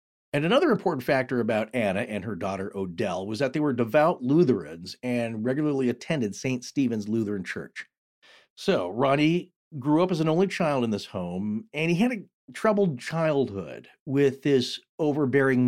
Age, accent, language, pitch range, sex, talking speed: 40-59, American, English, 115-155 Hz, male, 165 wpm